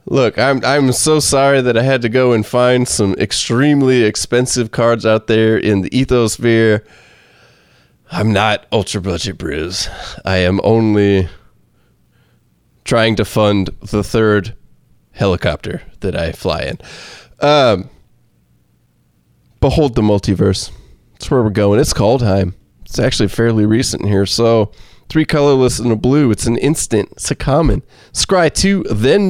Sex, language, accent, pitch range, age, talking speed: male, English, American, 105-140 Hz, 20-39, 145 wpm